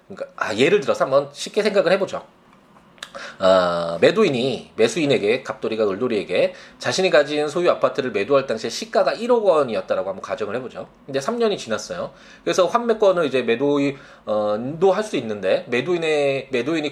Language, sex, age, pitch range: Korean, male, 20-39, 140-220 Hz